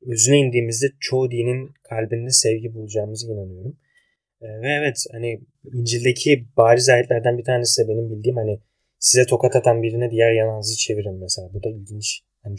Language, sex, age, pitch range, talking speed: Turkish, male, 30-49, 110-135 Hz, 155 wpm